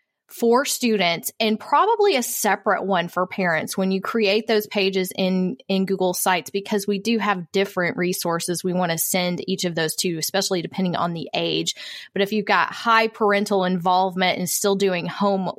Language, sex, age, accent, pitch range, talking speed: English, female, 20-39, American, 185-220 Hz, 180 wpm